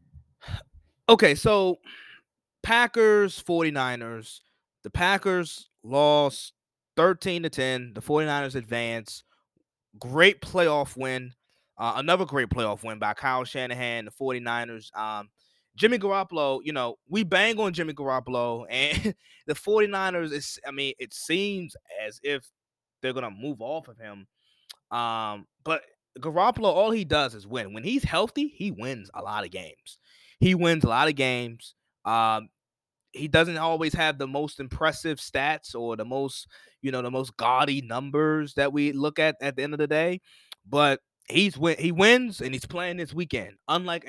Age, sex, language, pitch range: 20-39, male, English, 125-170 Hz